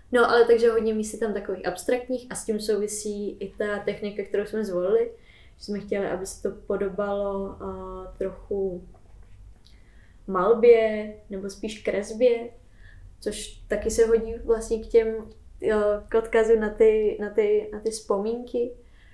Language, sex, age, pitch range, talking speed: Czech, female, 10-29, 195-220 Hz, 150 wpm